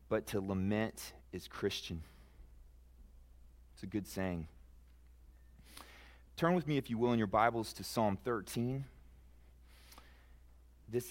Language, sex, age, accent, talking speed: English, male, 30-49, American, 120 wpm